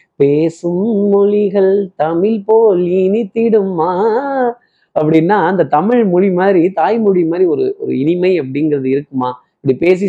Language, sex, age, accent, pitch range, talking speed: Tamil, male, 20-39, native, 145-190 Hz, 105 wpm